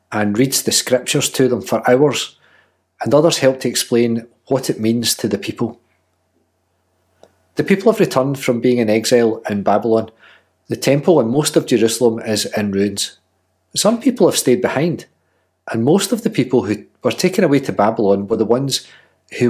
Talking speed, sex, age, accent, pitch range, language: 180 wpm, male, 40-59, British, 100-140 Hz, English